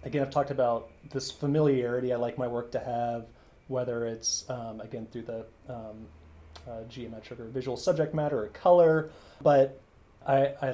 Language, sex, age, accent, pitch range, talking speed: English, male, 30-49, American, 120-135 Hz, 160 wpm